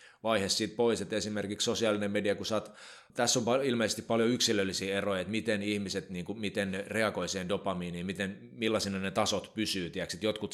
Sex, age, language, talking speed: male, 20-39, Finnish, 175 wpm